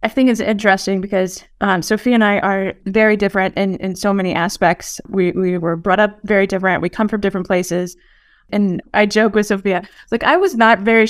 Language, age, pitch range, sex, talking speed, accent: English, 20-39, 195-235 Hz, female, 210 wpm, American